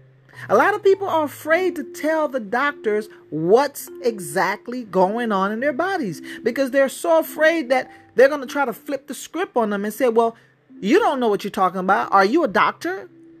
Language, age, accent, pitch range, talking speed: English, 40-59, American, 195-310 Hz, 205 wpm